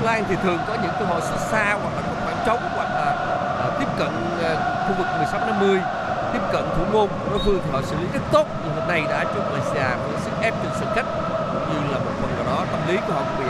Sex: male